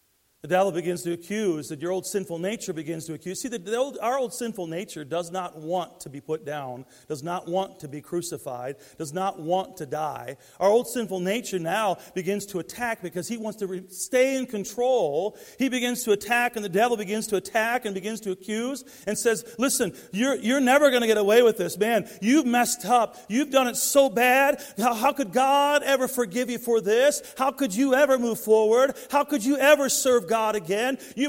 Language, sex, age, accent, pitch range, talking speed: English, male, 40-59, American, 150-245 Hz, 210 wpm